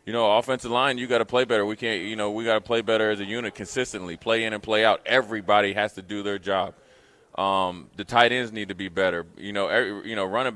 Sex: male